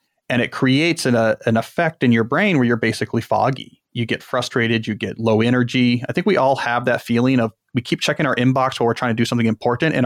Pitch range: 115-145 Hz